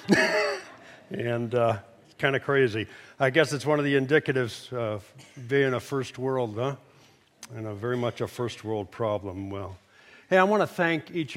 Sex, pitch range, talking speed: male, 105-125 Hz, 180 wpm